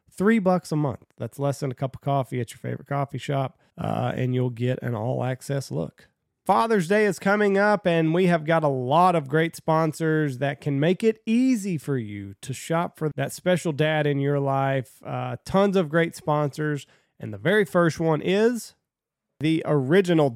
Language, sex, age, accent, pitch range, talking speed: English, male, 30-49, American, 130-170 Hz, 195 wpm